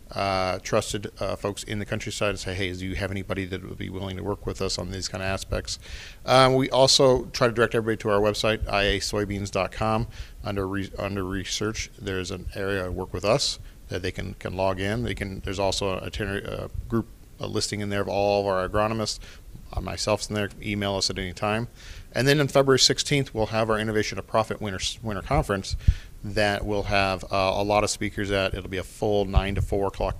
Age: 40-59